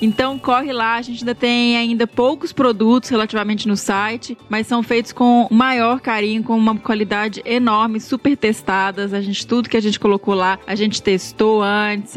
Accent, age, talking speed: Brazilian, 20-39, 185 wpm